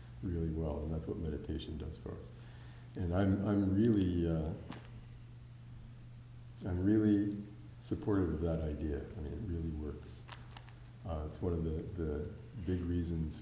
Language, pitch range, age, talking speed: English, 85-120 Hz, 50-69, 150 wpm